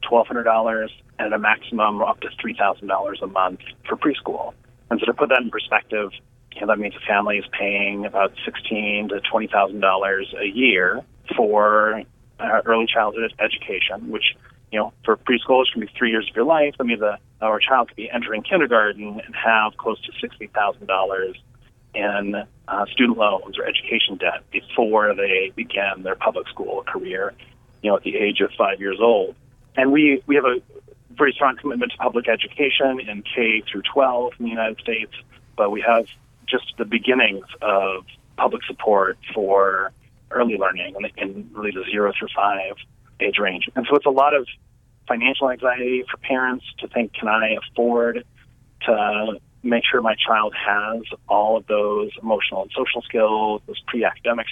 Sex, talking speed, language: male, 170 wpm, English